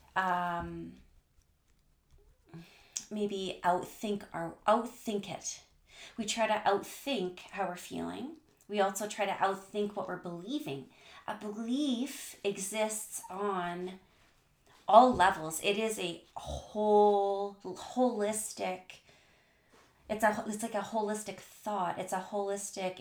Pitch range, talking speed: 170-205 Hz, 110 wpm